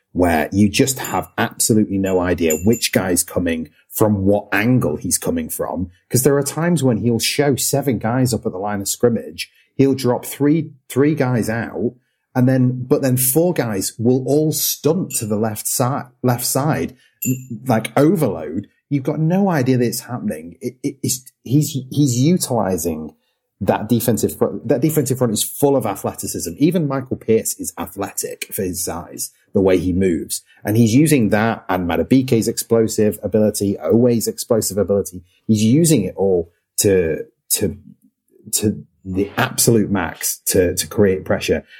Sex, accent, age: male, British, 30-49